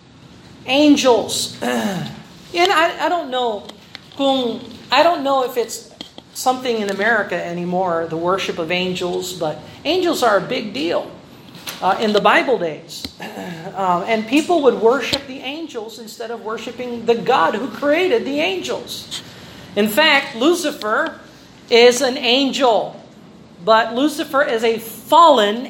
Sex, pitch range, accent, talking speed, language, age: male, 200-260 Hz, American, 130 wpm, Filipino, 40-59